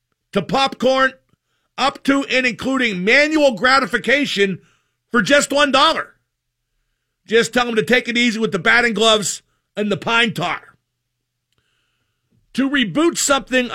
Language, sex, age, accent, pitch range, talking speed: English, male, 50-69, American, 195-250 Hz, 125 wpm